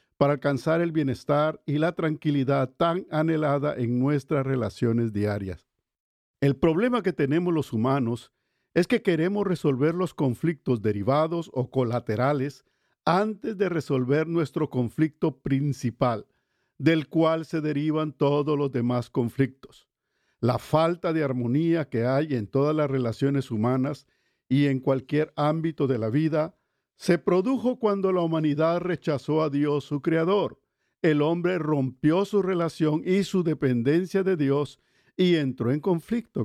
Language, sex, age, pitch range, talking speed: Spanish, male, 50-69, 135-175 Hz, 140 wpm